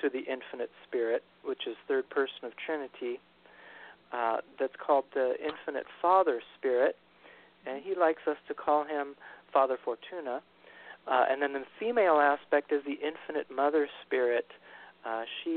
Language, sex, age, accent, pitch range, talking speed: English, male, 40-59, American, 130-205 Hz, 150 wpm